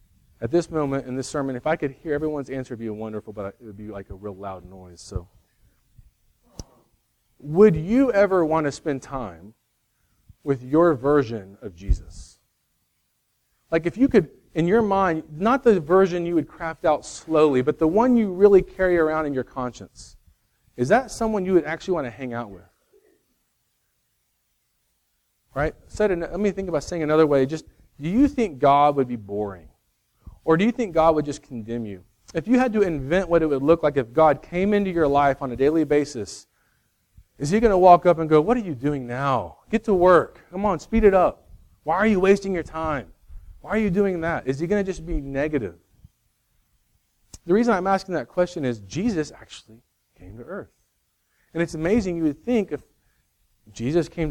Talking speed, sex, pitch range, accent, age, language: 195 wpm, male, 120-185 Hz, American, 40-59, English